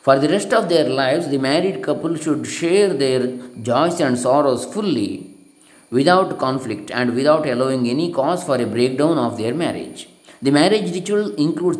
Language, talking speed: English, 170 wpm